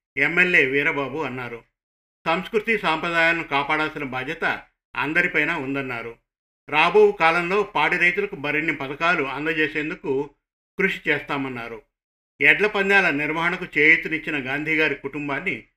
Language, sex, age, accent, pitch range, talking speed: Telugu, male, 50-69, native, 140-165 Hz, 90 wpm